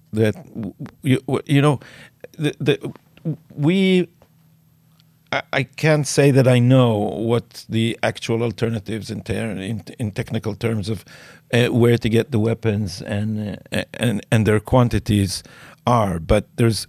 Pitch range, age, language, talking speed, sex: 110-135 Hz, 50-69, English, 140 wpm, male